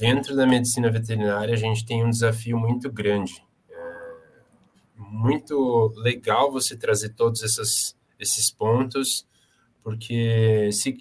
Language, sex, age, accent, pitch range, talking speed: Portuguese, male, 20-39, Brazilian, 110-135 Hz, 110 wpm